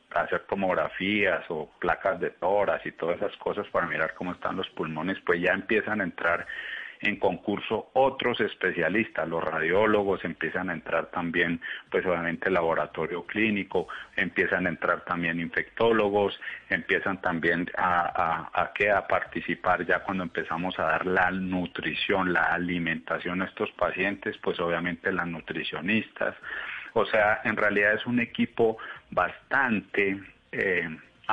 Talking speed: 140 wpm